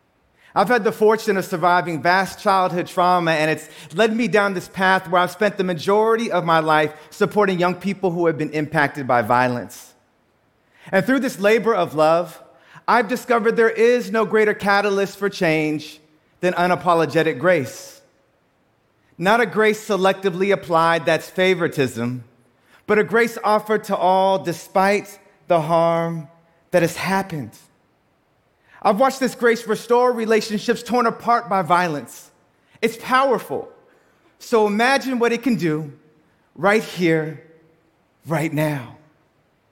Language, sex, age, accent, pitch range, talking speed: English, male, 30-49, American, 165-235 Hz, 140 wpm